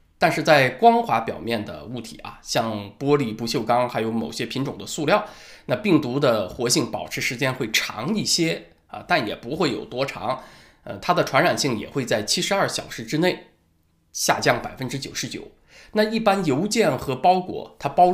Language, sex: Chinese, male